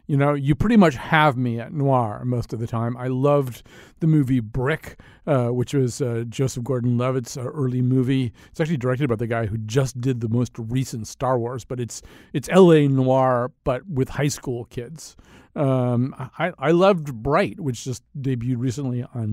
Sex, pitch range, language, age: male, 115-140 Hz, English, 50-69